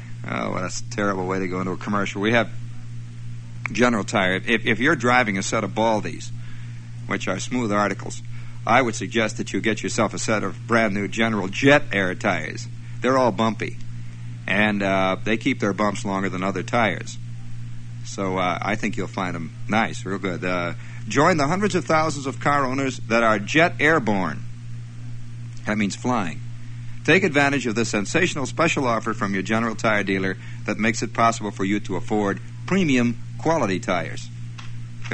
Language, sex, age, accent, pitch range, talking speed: English, male, 60-79, American, 110-120 Hz, 180 wpm